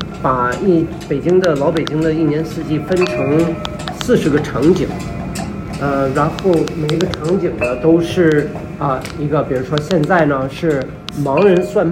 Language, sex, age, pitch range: Chinese, male, 40-59, 145-185 Hz